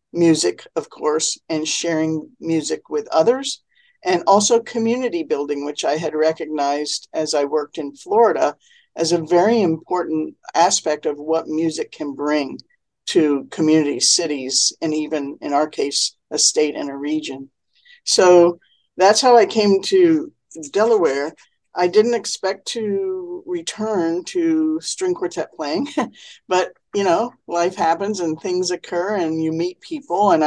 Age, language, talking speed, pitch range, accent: 50-69, English, 145 wpm, 155-235 Hz, American